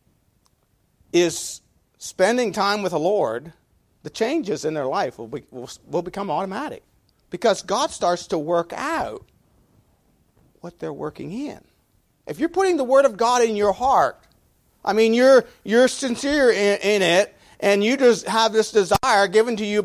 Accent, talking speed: American, 165 wpm